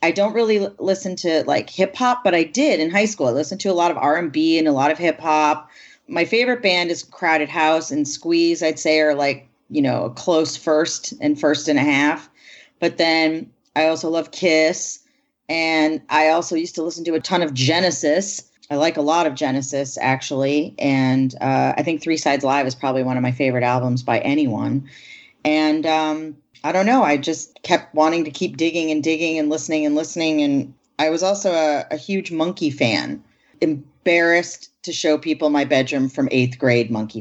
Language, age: English, 30-49